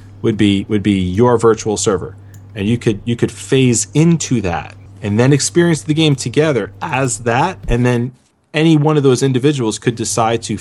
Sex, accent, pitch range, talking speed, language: male, American, 100-130 Hz, 185 wpm, English